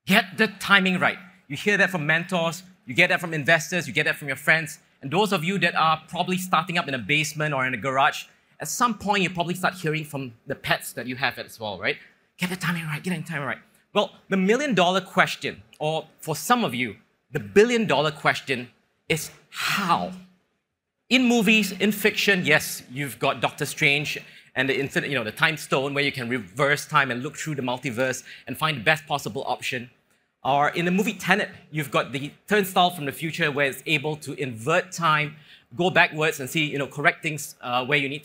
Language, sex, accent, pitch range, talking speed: English, male, Malaysian, 140-185 Hz, 220 wpm